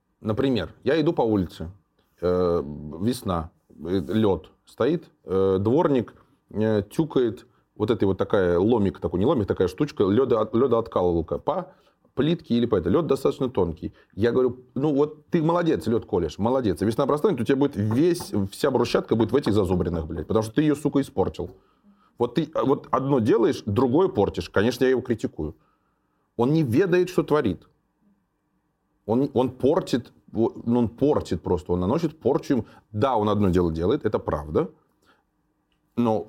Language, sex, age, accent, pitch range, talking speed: Russian, male, 30-49, native, 95-140 Hz, 150 wpm